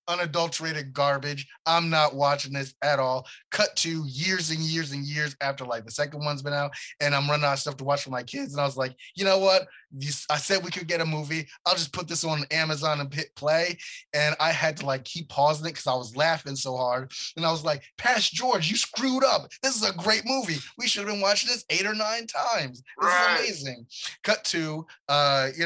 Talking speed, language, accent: 240 wpm, English, American